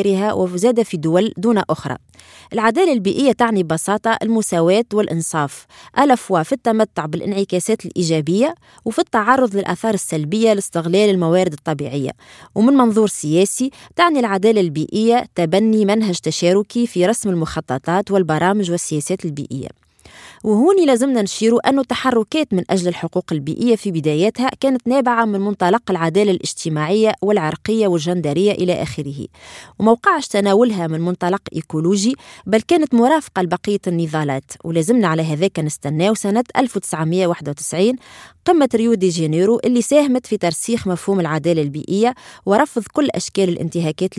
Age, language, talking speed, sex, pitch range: 20-39, Arabic, 120 wpm, female, 170-230 Hz